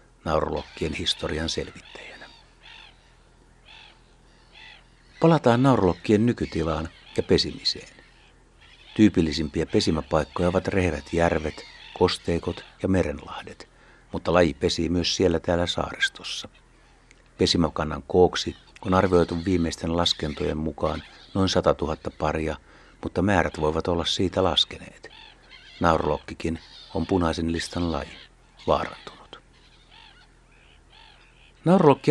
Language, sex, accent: Finnish, male, native